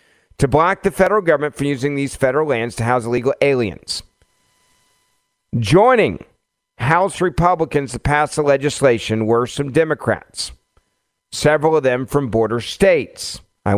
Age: 50-69